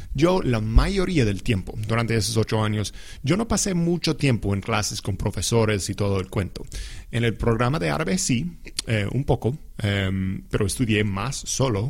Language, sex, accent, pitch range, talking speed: English, male, Mexican, 100-130 Hz, 180 wpm